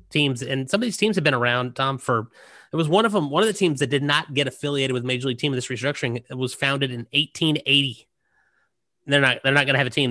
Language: English